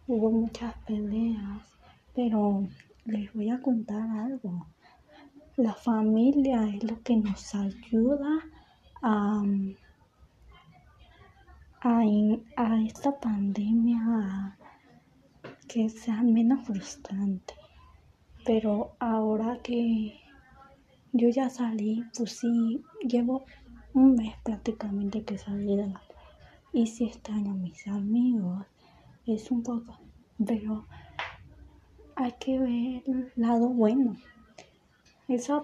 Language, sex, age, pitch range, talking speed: Spanish, female, 20-39, 210-240 Hz, 100 wpm